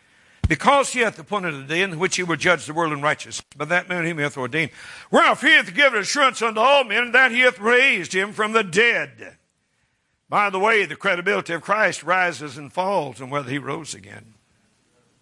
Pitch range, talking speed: 140-195 Hz, 210 wpm